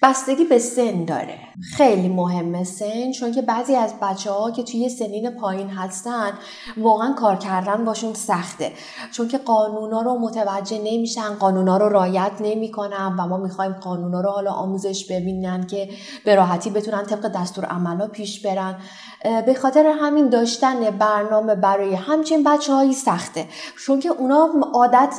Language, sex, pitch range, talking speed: Persian, female, 190-240 Hz, 150 wpm